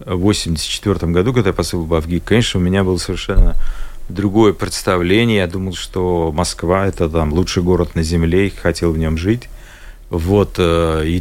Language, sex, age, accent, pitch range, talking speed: Russian, male, 40-59, native, 85-105 Hz, 165 wpm